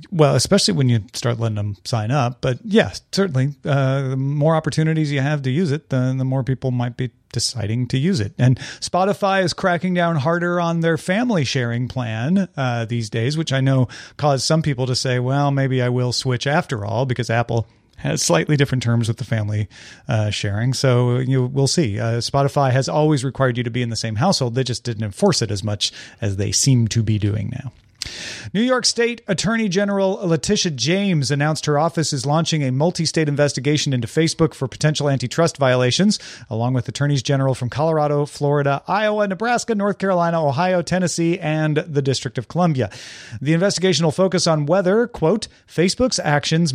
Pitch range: 125-170 Hz